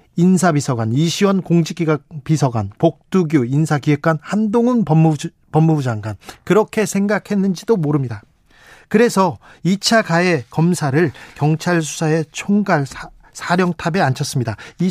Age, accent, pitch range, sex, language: 40-59, native, 145-210 Hz, male, Korean